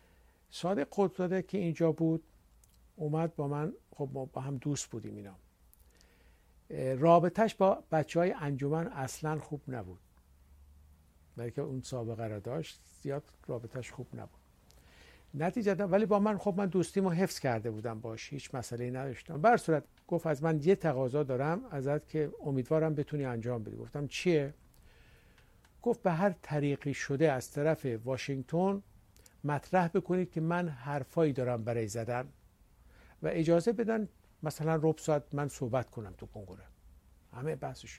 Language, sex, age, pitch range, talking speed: Persian, male, 60-79, 115-165 Hz, 145 wpm